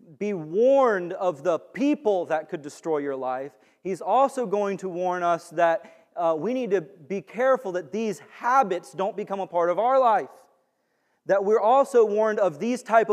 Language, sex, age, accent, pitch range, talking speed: English, male, 30-49, American, 180-230 Hz, 185 wpm